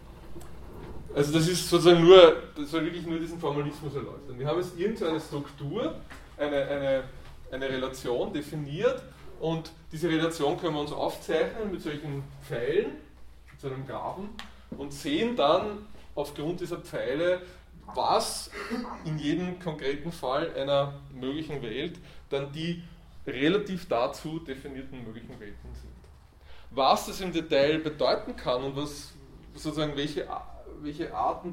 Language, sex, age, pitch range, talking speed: German, male, 20-39, 135-165 Hz, 135 wpm